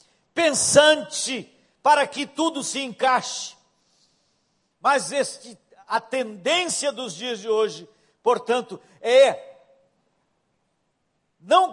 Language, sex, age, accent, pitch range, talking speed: Portuguese, male, 60-79, Brazilian, 245-295 Hz, 85 wpm